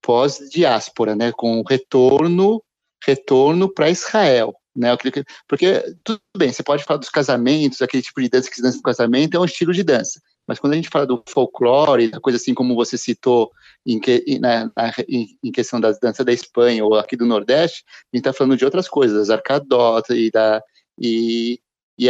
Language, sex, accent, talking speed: Portuguese, male, Brazilian, 195 wpm